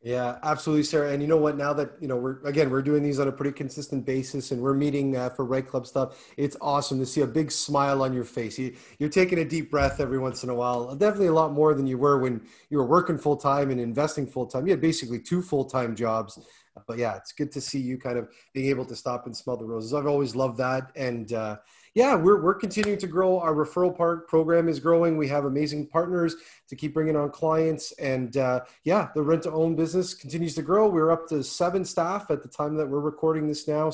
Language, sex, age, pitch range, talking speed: English, male, 30-49, 130-165 Hz, 250 wpm